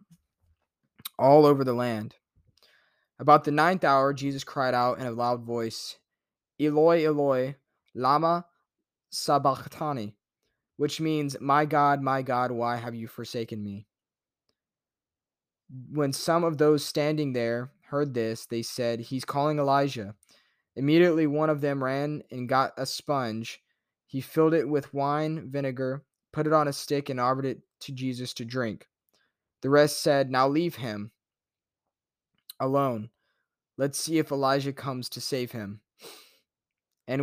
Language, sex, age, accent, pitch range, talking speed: English, male, 20-39, American, 120-150 Hz, 140 wpm